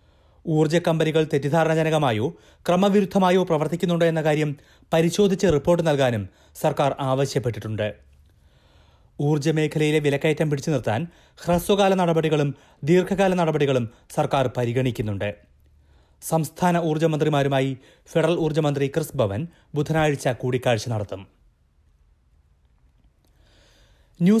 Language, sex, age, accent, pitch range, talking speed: Malayalam, male, 30-49, native, 125-170 Hz, 75 wpm